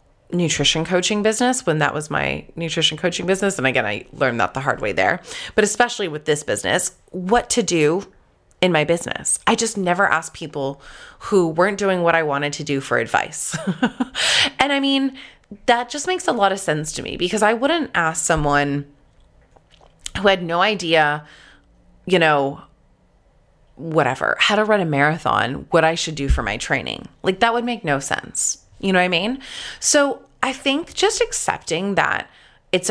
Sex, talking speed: female, 180 wpm